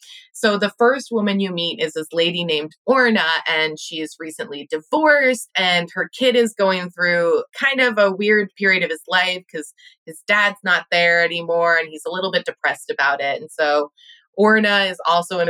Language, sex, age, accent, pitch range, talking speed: English, female, 20-39, American, 170-230 Hz, 195 wpm